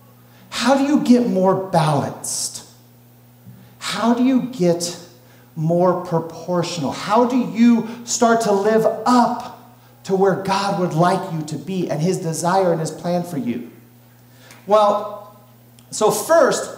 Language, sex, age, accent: English, male, 40-59, American